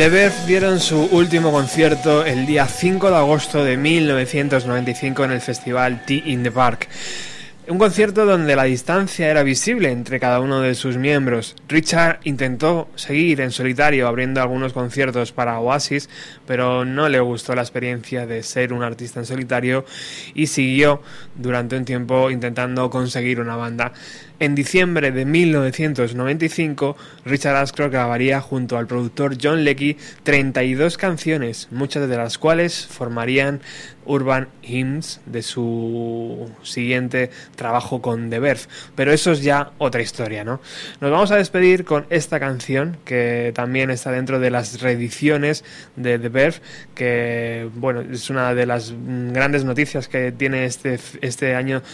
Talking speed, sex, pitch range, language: 150 wpm, male, 125-150 Hz, Spanish